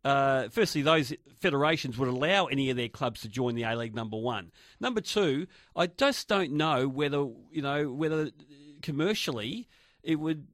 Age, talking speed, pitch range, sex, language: 40-59, 175 wpm, 130-155 Hz, male, English